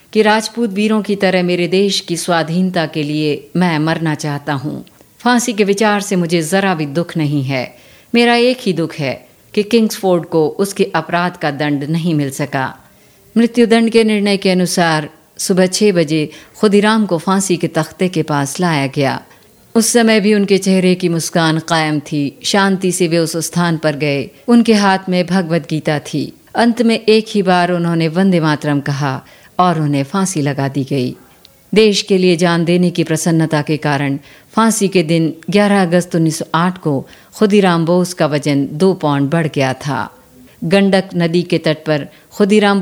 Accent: native